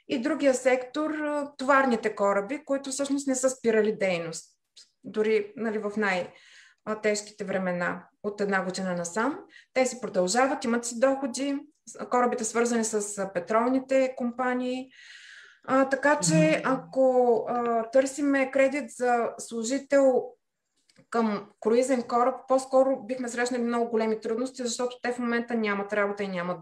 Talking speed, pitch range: 130 wpm, 215-265 Hz